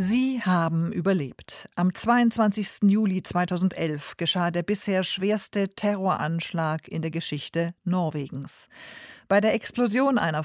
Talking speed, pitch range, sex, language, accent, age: 115 wpm, 160-205 Hz, female, German, German, 50-69